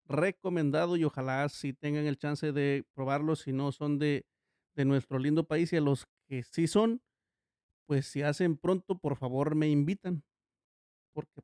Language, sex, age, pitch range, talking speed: Spanish, male, 40-59, 140-170 Hz, 175 wpm